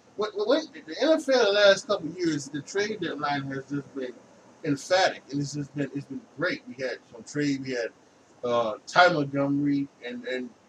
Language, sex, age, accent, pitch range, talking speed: English, male, 20-39, American, 130-155 Hz, 190 wpm